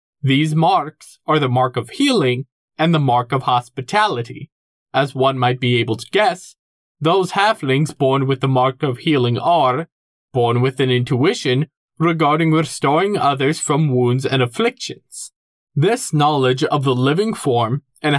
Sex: male